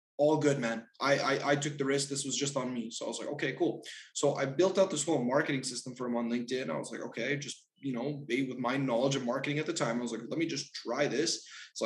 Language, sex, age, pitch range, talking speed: English, male, 20-39, 130-165 Hz, 285 wpm